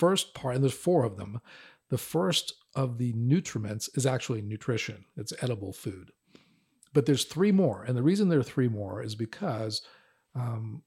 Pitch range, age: 105-135 Hz, 50-69